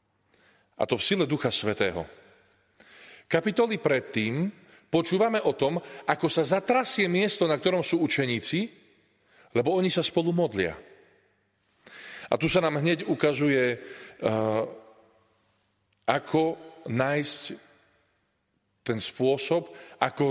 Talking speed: 105 wpm